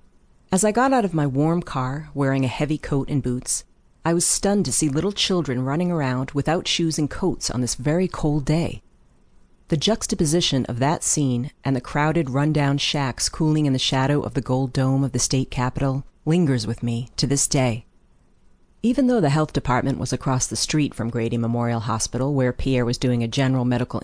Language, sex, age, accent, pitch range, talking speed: English, female, 40-59, American, 120-155 Hz, 200 wpm